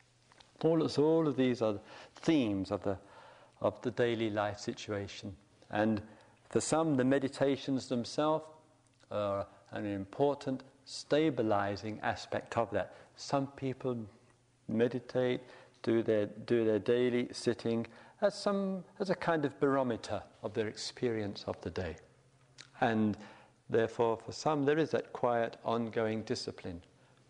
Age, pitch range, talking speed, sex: 50-69, 110-140 Hz, 130 wpm, male